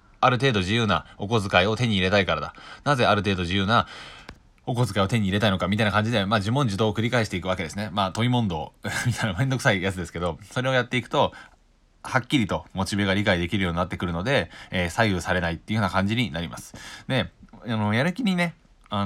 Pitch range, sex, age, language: 90-115 Hz, male, 20-39, Japanese